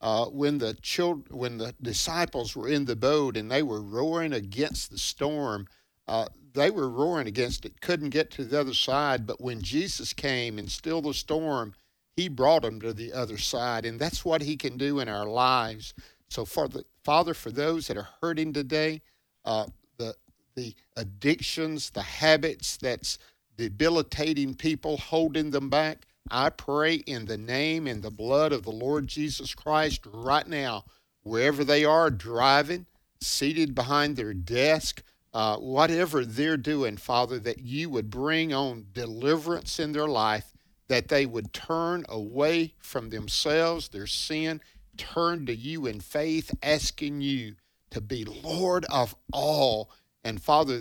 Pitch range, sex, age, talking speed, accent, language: 115-155 Hz, male, 50-69, 160 wpm, American, English